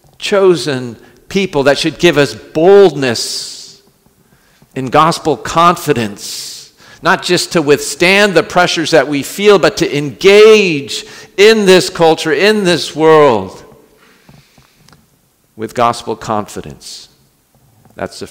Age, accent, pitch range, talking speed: 50-69, American, 115-155 Hz, 110 wpm